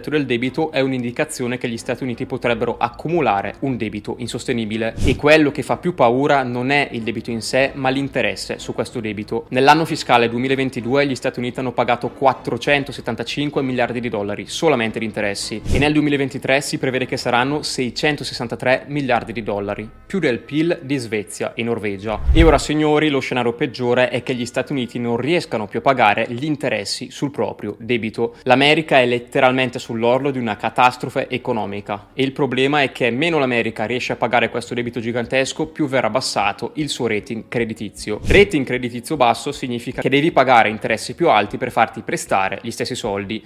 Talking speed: 175 wpm